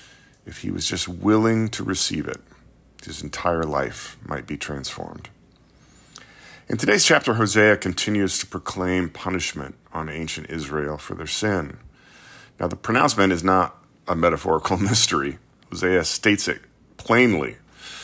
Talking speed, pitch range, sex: 135 wpm, 75-95 Hz, male